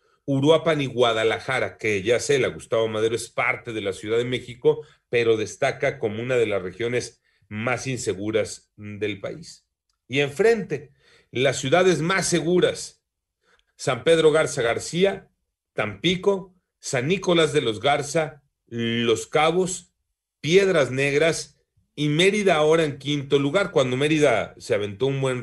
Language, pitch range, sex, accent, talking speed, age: Spanish, 120-175 Hz, male, Mexican, 140 wpm, 40-59